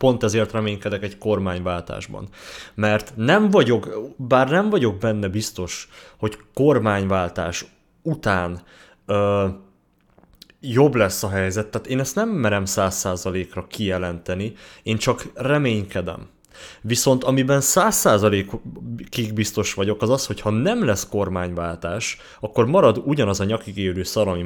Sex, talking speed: male, 130 wpm